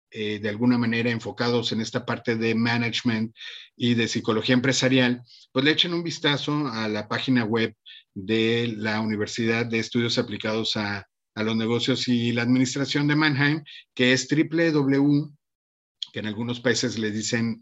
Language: Spanish